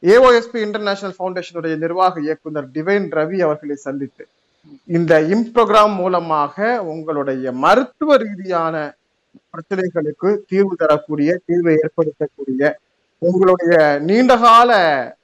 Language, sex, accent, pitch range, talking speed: Tamil, male, native, 150-200 Hz, 90 wpm